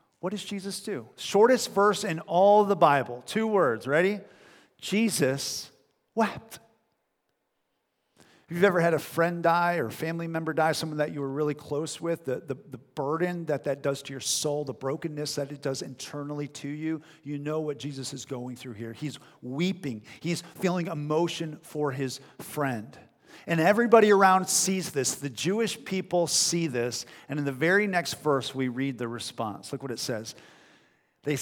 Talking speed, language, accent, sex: 180 wpm, English, American, male